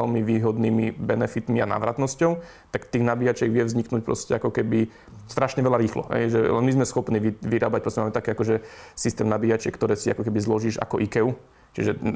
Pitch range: 110-115 Hz